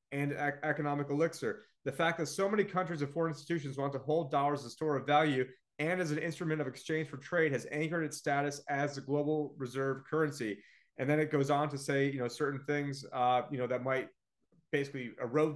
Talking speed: 220 wpm